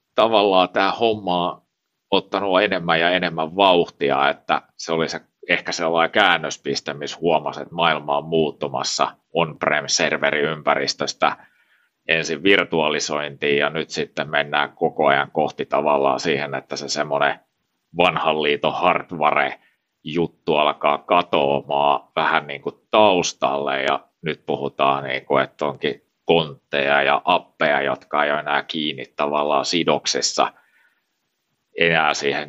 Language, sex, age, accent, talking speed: Finnish, male, 30-49, native, 120 wpm